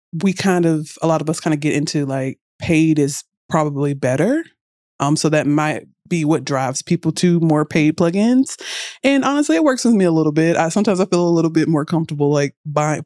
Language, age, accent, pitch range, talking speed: English, 30-49, American, 150-190 Hz, 220 wpm